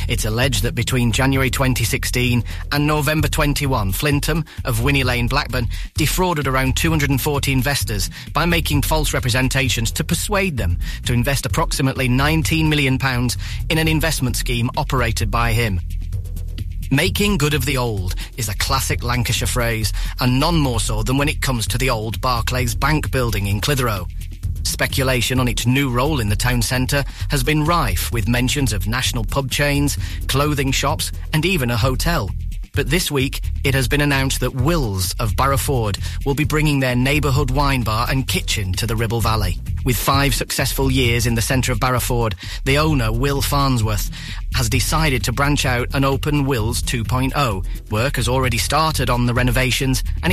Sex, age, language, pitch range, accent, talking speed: male, 30-49, English, 105-140 Hz, British, 170 wpm